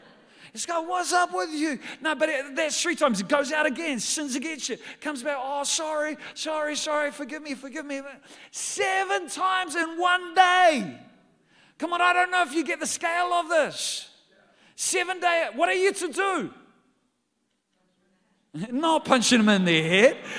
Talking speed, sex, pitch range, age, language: 175 wpm, male, 190-310 Hz, 40-59, English